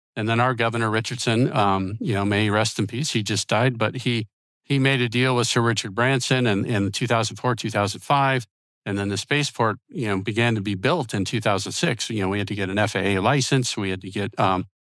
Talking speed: 225 wpm